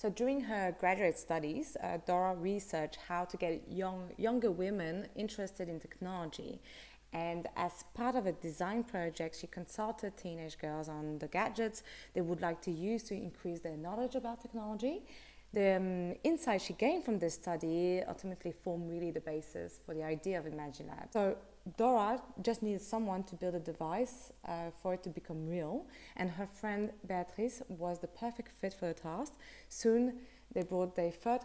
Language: English